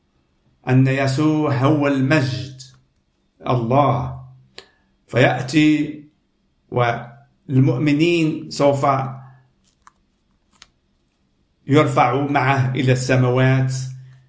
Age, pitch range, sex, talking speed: 50-69, 120-145 Hz, male, 50 wpm